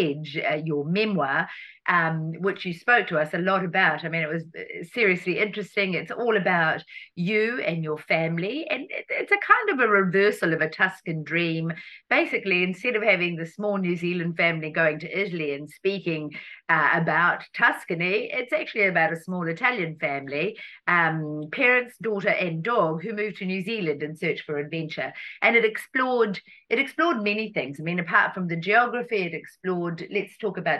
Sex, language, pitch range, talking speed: female, Italian, 160-210 Hz, 180 wpm